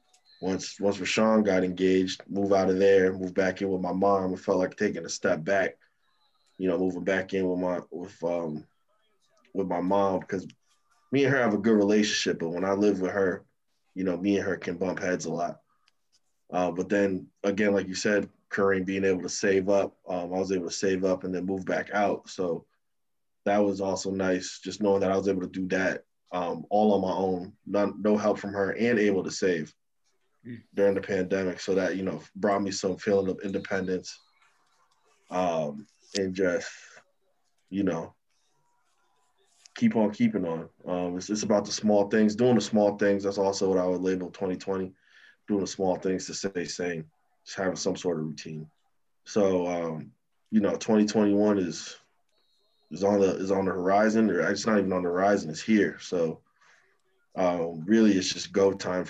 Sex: male